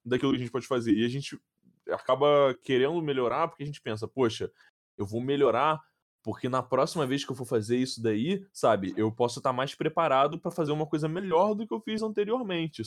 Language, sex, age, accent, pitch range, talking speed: Portuguese, male, 10-29, Brazilian, 120-155 Hz, 215 wpm